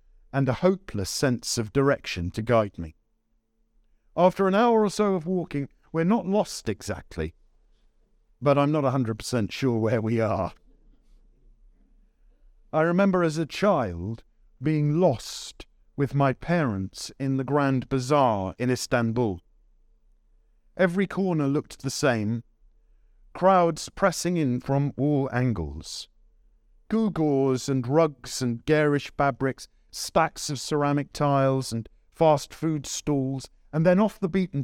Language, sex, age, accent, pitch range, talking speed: English, male, 50-69, British, 110-155 Hz, 125 wpm